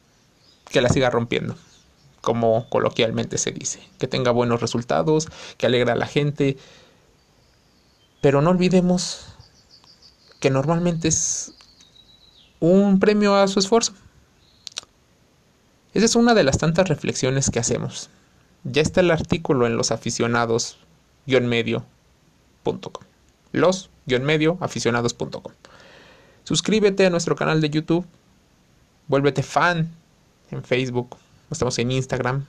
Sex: male